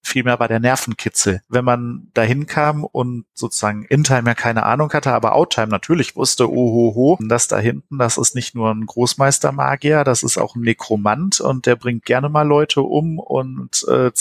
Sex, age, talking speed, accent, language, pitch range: male, 40-59, 190 wpm, German, German, 120-145 Hz